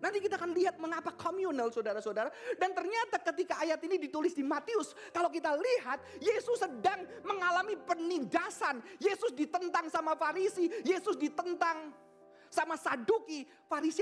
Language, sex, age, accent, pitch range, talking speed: Indonesian, male, 30-49, native, 265-365 Hz, 135 wpm